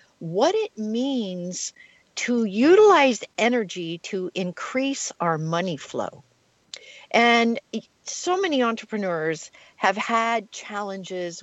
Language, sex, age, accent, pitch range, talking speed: English, female, 50-69, American, 185-255 Hz, 95 wpm